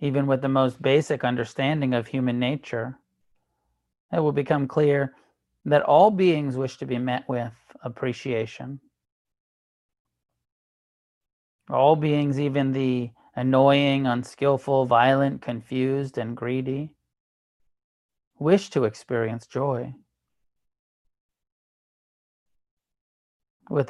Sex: male